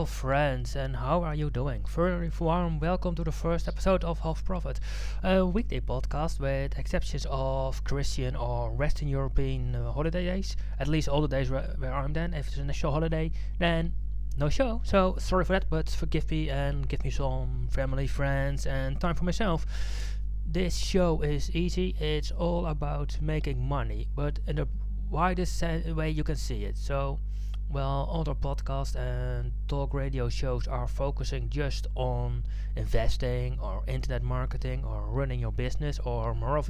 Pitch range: 120-160 Hz